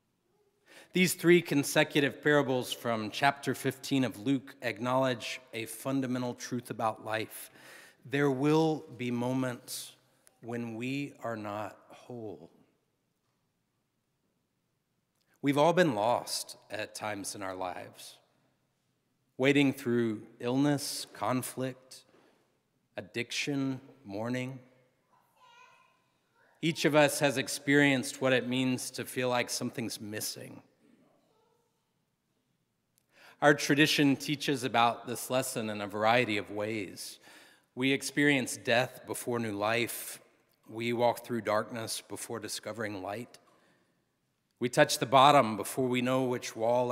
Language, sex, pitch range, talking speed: English, male, 110-140 Hz, 110 wpm